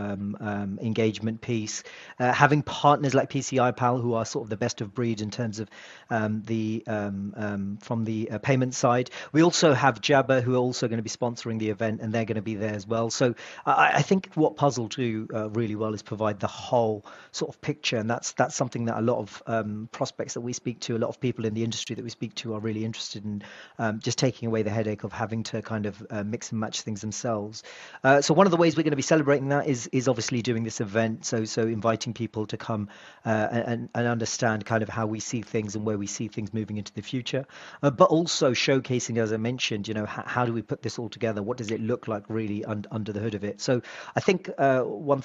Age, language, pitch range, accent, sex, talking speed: 40-59, English, 110-125 Hz, British, male, 255 wpm